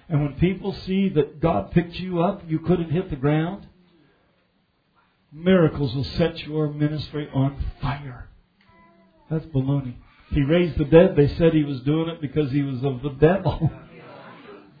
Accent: American